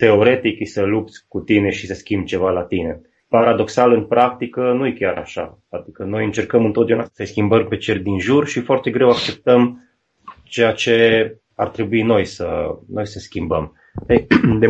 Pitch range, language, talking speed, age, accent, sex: 100-120 Hz, Romanian, 175 wpm, 20-39, native, male